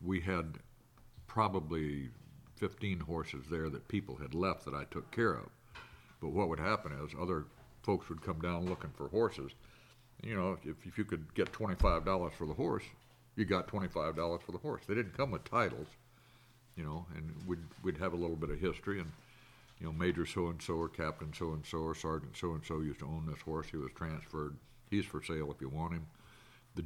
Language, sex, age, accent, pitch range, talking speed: English, male, 60-79, American, 75-95 Hz, 195 wpm